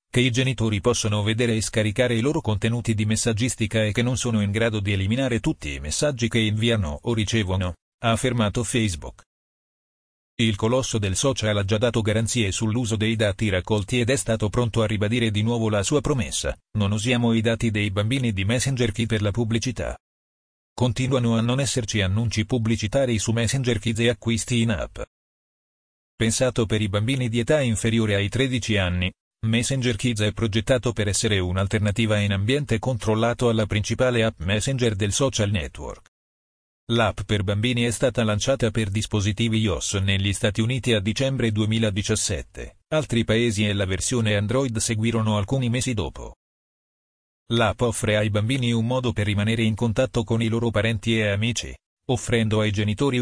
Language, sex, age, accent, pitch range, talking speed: Italian, male, 40-59, native, 105-120 Hz, 170 wpm